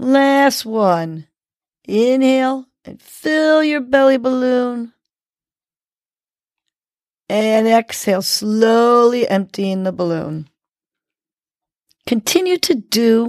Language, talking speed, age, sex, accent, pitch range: English, 75 wpm, 50-69, female, American, 175-255 Hz